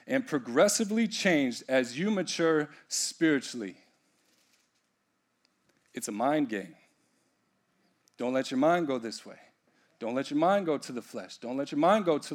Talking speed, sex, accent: 155 wpm, male, American